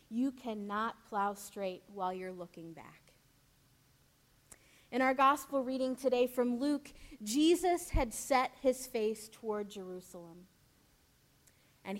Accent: American